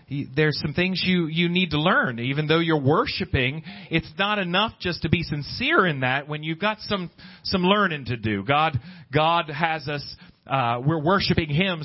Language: English